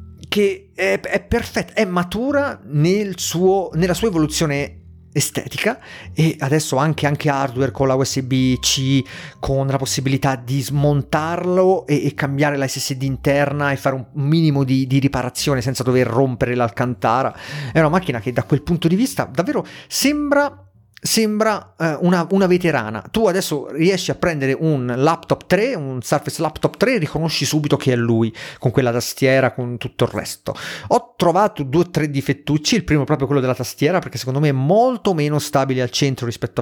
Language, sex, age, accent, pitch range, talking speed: Italian, male, 30-49, native, 135-175 Hz, 170 wpm